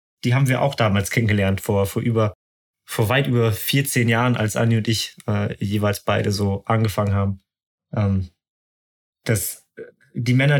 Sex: male